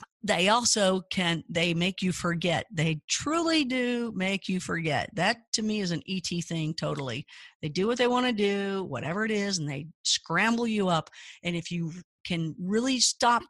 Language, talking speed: English, 185 wpm